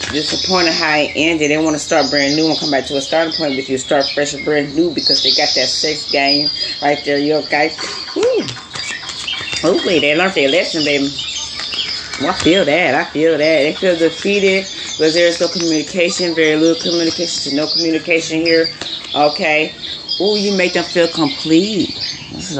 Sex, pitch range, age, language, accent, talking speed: female, 135-165 Hz, 30-49, English, American, 190 wpm